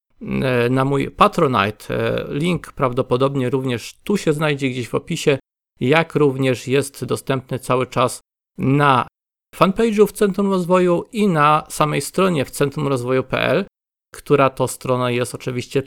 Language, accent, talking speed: Polish, native, 130 wpm